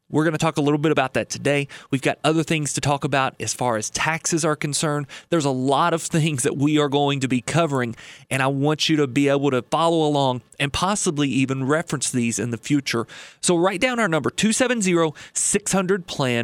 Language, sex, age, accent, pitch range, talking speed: English, male, 30-49, American, 140-170 Hz, 210 wpm